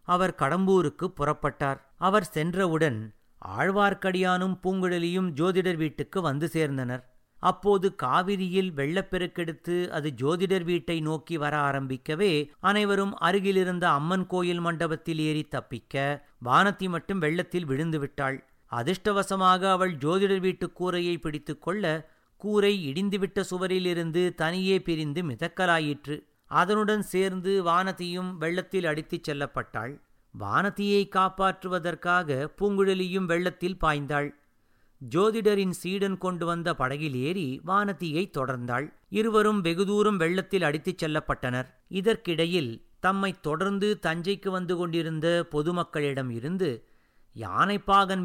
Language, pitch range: Tamil, 155-190 Hz